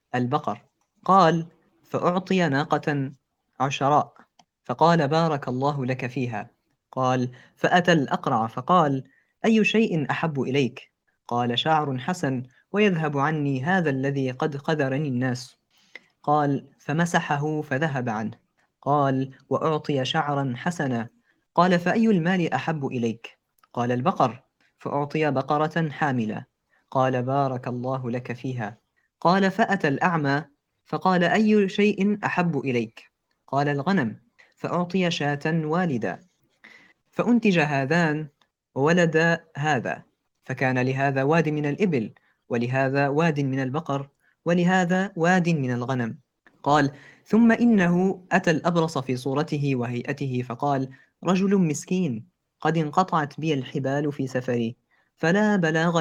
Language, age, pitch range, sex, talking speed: Arabic, 20-39, 130-170 Hz, female, 105 wpm